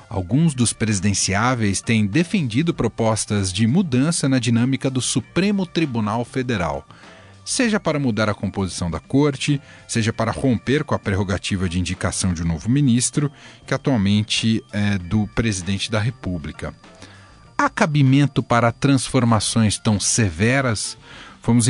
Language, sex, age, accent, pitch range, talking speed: Portuguese, male, 40-59, Brazilian, 105-140 Hz, 130 wpm